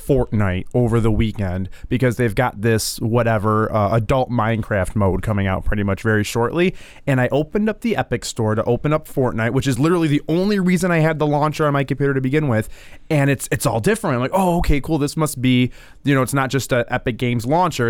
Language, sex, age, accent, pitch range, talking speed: English, male, 20-39, American, 120-150 Hz, 230 wpm